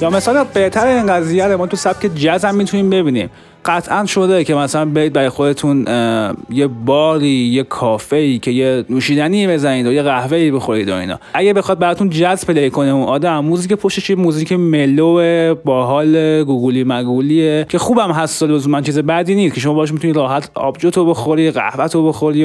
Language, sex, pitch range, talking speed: Persian, male, 130-170 Hz, 175 wpm